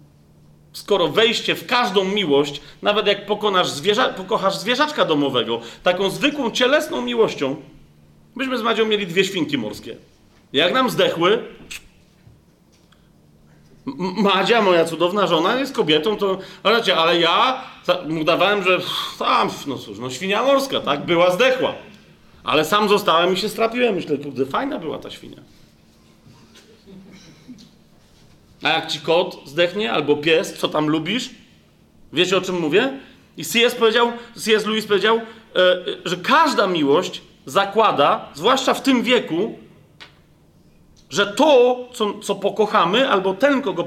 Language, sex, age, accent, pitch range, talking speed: Polish, male, 40-59, native, 175-235 Hz, 130 wpm